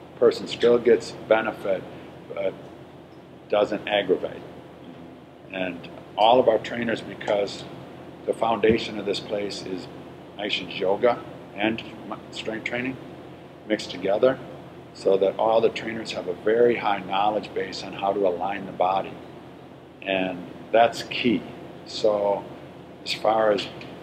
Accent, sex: American, male